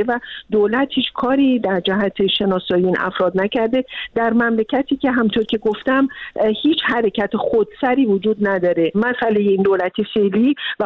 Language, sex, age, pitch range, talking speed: Persian, female, 50-69, 200-245 Hz, 145 wpm